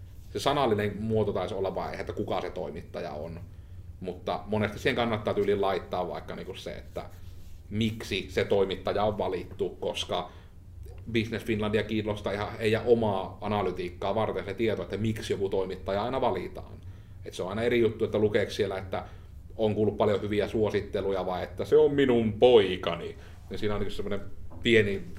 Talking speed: 165 wpm